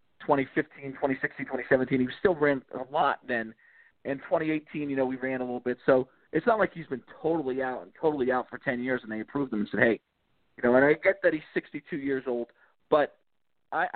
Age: 40-59